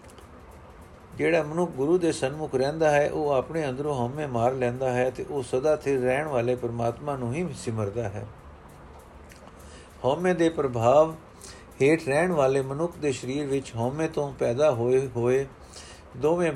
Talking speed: 150 wpm